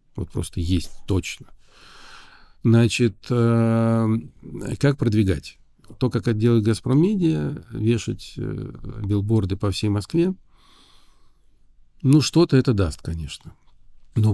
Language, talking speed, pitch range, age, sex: Russian, 90 wpm, 100-120 Hz, 50-69, male